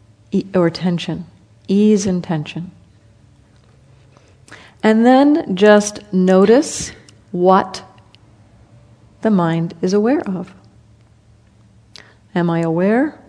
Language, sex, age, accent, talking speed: English, female, 50-69, American, 85 wpm